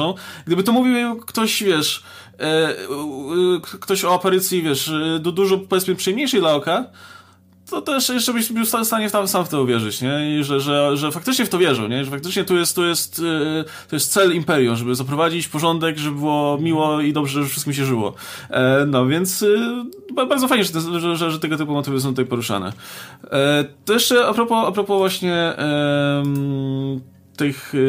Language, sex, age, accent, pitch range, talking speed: Polish, male, 20-39, native, 140-190 Hz, 180 wpm